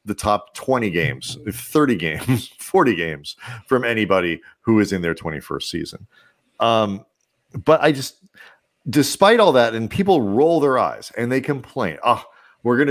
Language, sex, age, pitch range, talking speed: English, male, 40-59, 105-150 Hz, 160 wpm